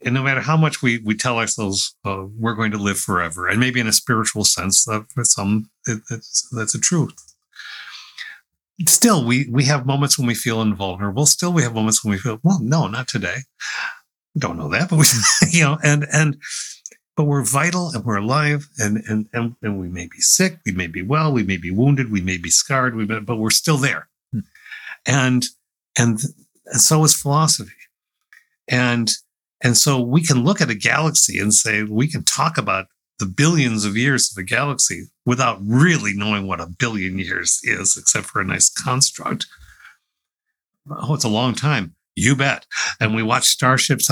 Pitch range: 110-150 Hz